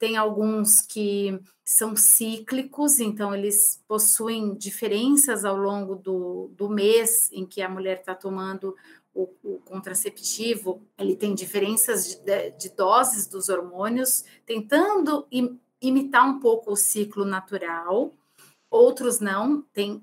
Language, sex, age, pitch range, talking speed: Portuguese, female, 40-59, 195-250 Hz, 125 wpm